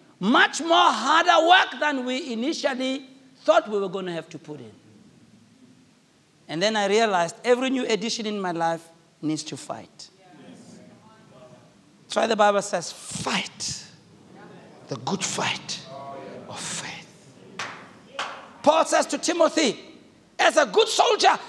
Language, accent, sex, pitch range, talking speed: English, South African, male, 245-340 Hz, 135 wpm